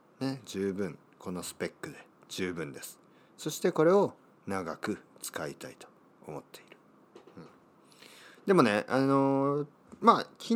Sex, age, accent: male, 40-59, native